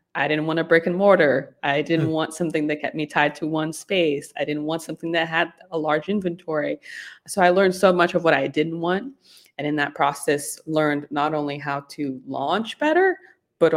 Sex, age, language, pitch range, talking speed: female, 20-39, English, 155-200 Hz, 215 wpm